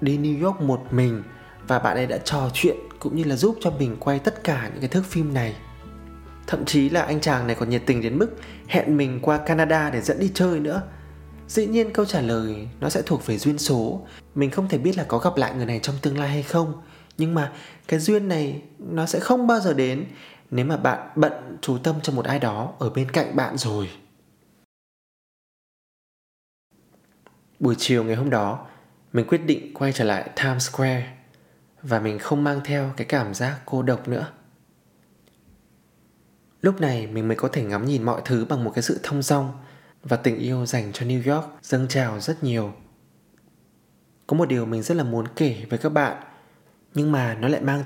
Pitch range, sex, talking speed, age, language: 115-155 Hz, male, 205 wpm, 20-39, Vietnamese